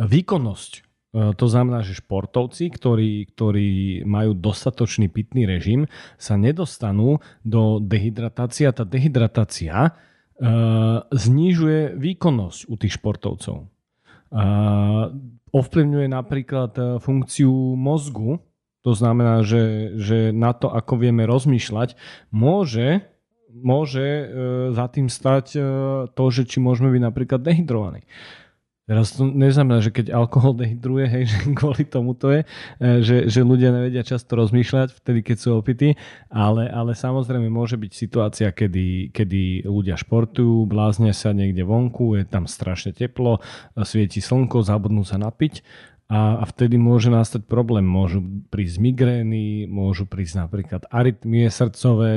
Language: Slovak